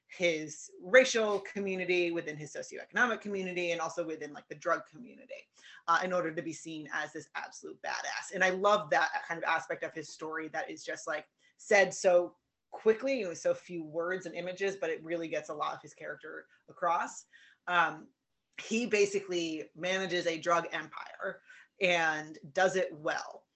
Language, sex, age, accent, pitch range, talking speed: English, female, 30-49, American, 165-205 Hz, 175 wpm